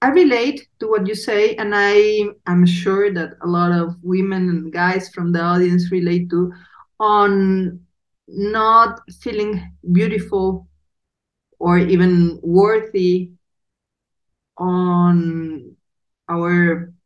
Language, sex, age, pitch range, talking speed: English, female, 40-59, 175-200 Hz, 110 wpm